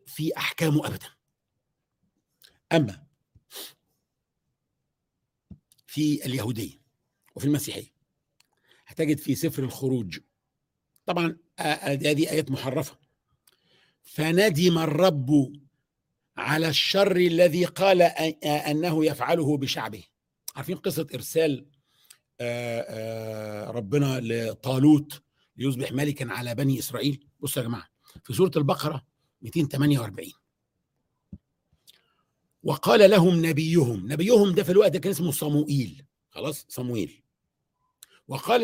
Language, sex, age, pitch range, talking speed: Arabic, male, 50-69, 135-175 Hz, 95 wpm